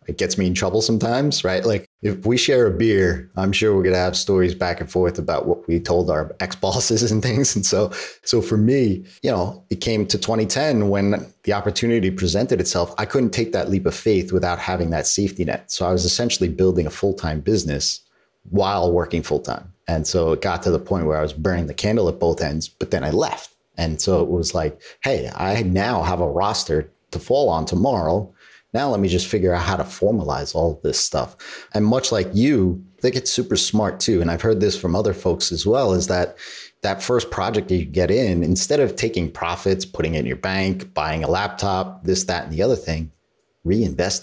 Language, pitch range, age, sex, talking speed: English, 85-105 Hz, 30-49, male, 225 wpm